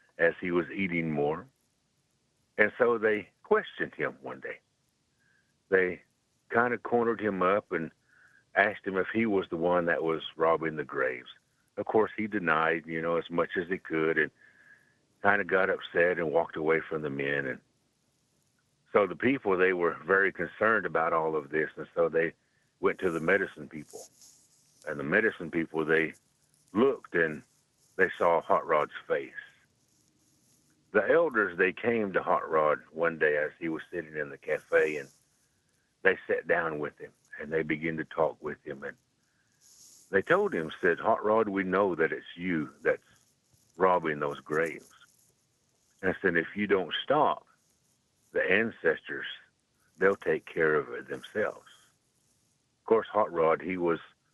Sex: male